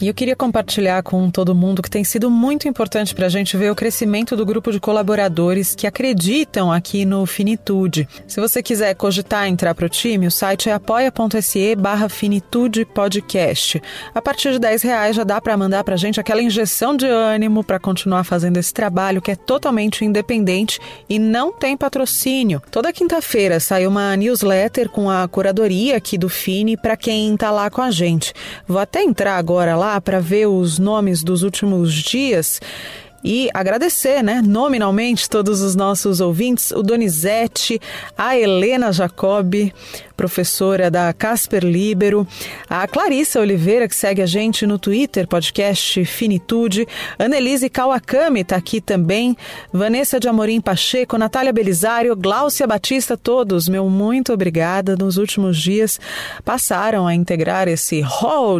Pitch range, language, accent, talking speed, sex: 190-230 Hz, Portuguese, Brazilian, 155 wpm, female